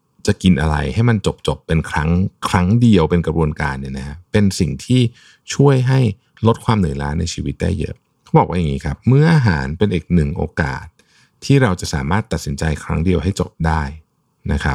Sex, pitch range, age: male, 80-110 Hz, 60-79